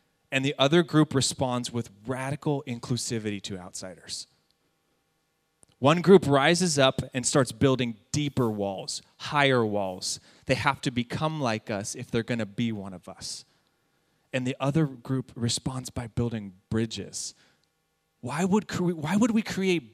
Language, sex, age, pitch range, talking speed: English, male, 30-49, 120-160 Hz, 150 wpm